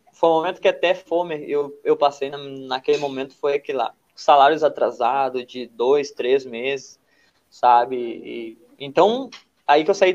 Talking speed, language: 165 wpm, Portuguese